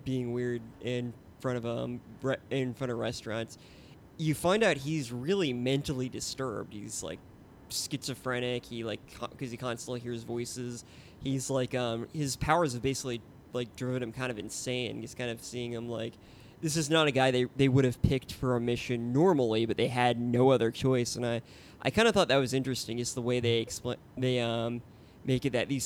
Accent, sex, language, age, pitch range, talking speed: American, male, English, 20-39, 115-135 Hz, 205 wpm